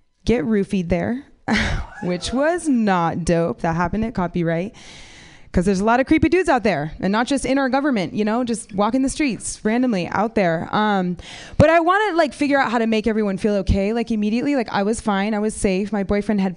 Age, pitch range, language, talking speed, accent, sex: 20-39, 195-255 Hz, English, 215 wpm, American, female